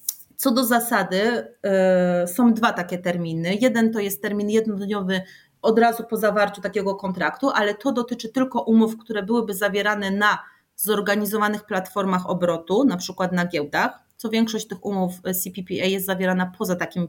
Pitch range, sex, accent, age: 185-225 Hz, female, native, 30-49